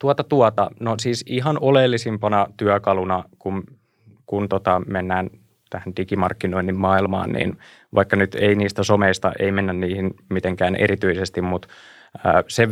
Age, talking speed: 20-39, 125 wpm